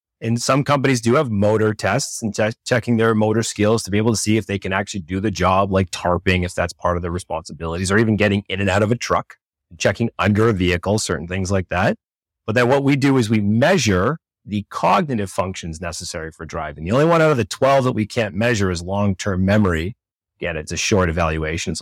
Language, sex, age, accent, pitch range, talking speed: English, male, 30-49, American, 95-115 Hz, 230 wpm